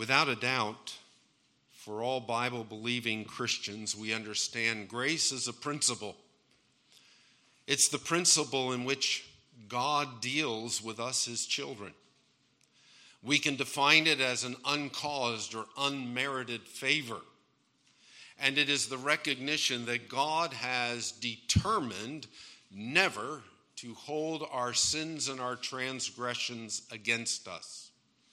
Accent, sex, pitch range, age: American, male, 120-140 Hz, 50-69